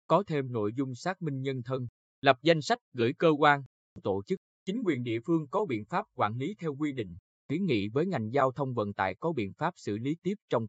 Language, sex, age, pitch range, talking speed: Vietnamese, male, 20-39, 115-155 Hz, 240 wpm